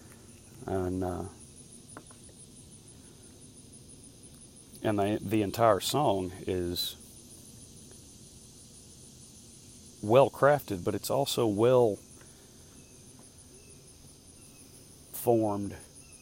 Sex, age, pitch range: male, 40-59, 90-115 Hz